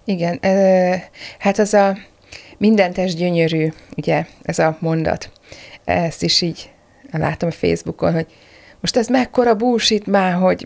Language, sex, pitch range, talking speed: Hungarian, female, 160-205 Hz, 135 wpm